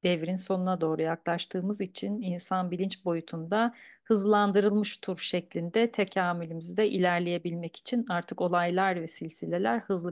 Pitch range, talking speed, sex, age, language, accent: 170-230 Hz, 115 wpm, female, 40-59, Turkish, native